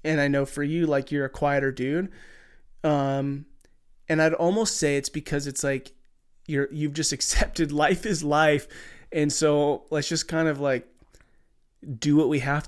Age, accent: 20-39, American